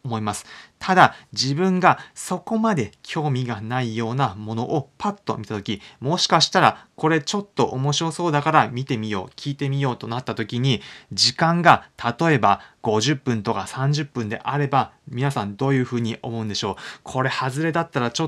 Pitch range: 115-145 Hz